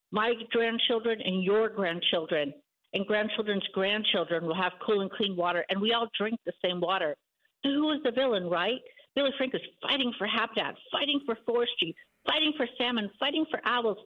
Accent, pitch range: American, 175-230 Hz